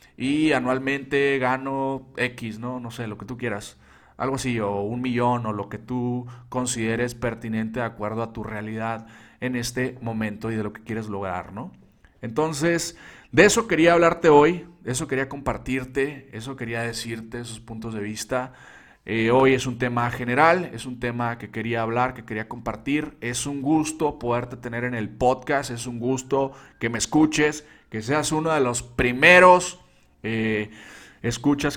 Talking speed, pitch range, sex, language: 170 wpm, 115-135 Hz, male, Spanish